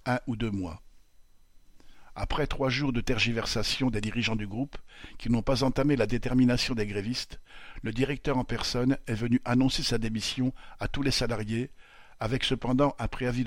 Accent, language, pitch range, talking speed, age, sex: French, French, 110-130 Hz, 170 wpm, 50-69, male